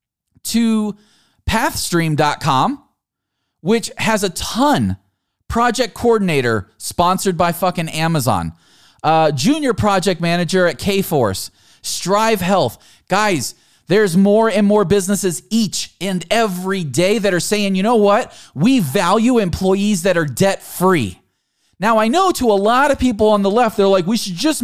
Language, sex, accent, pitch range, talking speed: English, male, American, 160-230 Hz, 140 wpm